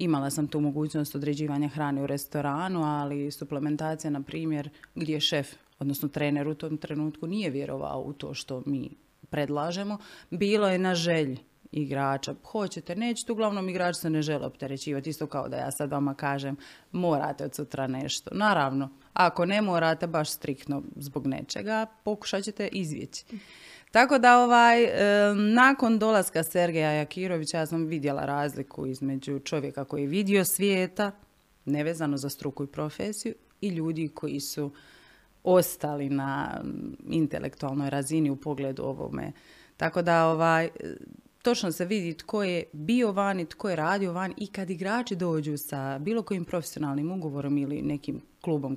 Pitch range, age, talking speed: 145-190 Hz, 30-49, 150 wpm